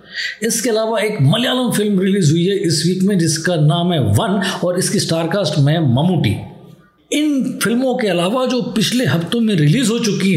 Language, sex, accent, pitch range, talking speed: Hindi, male, native, 165-220 Hz, 185 wpm